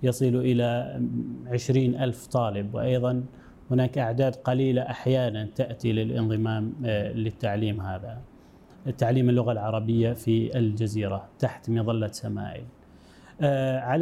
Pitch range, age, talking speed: 115-135 Hz, 30-49, 90 wpm